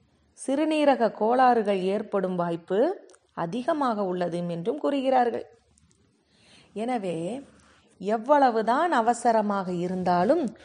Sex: female